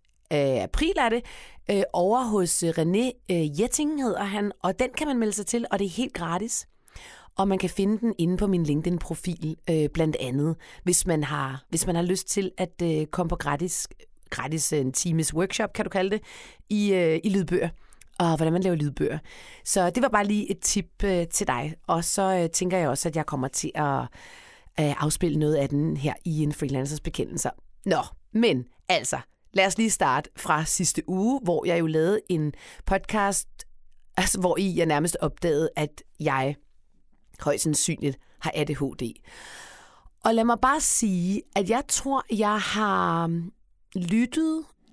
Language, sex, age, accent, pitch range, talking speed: Danish, female, 30-49, native, 160-215 Hz, 180 wpm